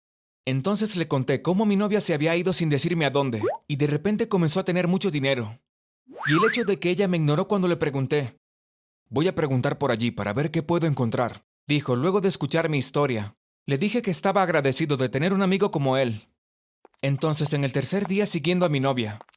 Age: 30-49